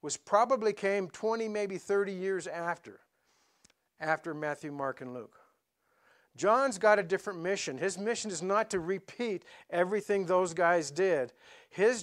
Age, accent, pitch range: 50-69, American, 160-205 Hz